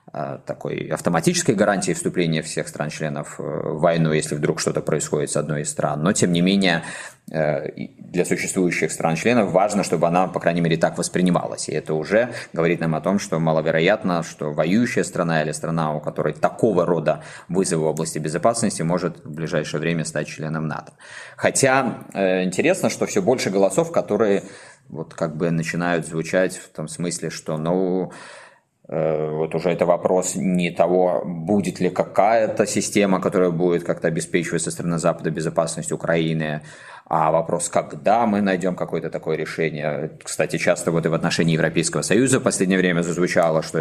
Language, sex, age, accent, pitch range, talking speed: Russian, male, 20-39, native, 80-90 Hz, 160 wpm